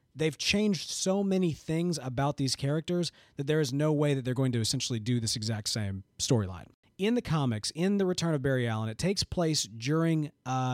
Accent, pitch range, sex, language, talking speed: American, 125-160 Hz, male, English, 205 wpm